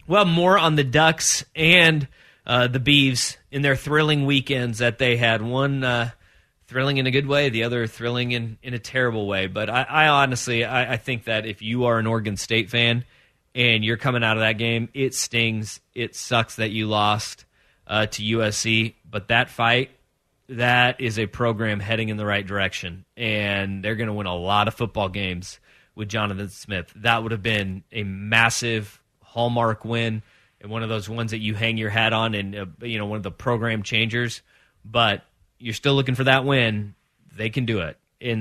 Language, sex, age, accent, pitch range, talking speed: English, male, 30-49, American, 110-140 Hz, 200 wpm